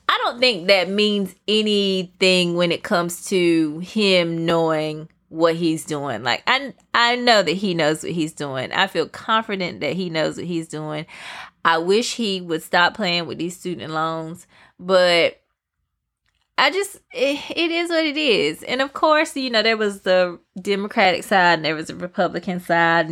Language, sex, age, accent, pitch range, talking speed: English, female, 20-39, American, 165-210 Hz, 180 wpm